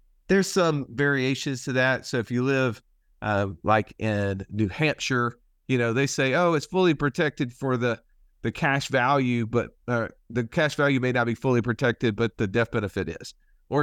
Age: 40-59